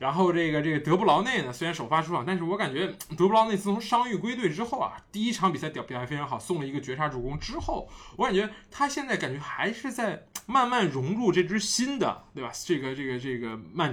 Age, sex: 20-39, male